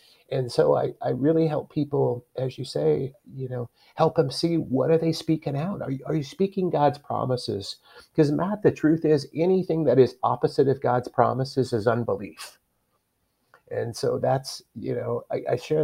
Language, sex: English, male